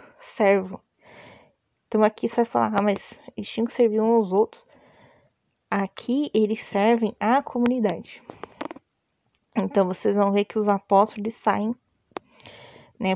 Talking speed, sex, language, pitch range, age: 130 wpm, female, Portuguese, 200-240 Hz, 20-39